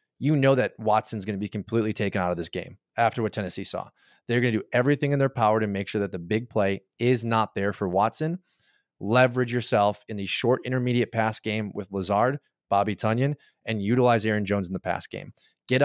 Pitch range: 100-125 Hz